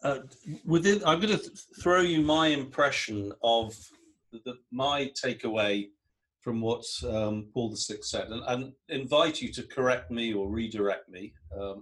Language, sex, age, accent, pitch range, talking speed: English, male, 50-69, British, 105-135 Hz, 160 wpm